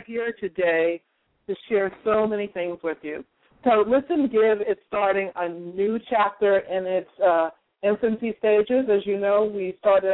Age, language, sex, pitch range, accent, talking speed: 50-69, English, female, 180-230 Hz, American, 160 wpm